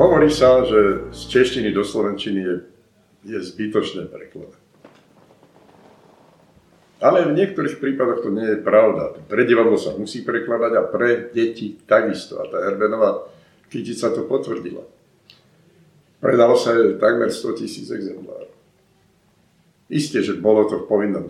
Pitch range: 105-140 Hz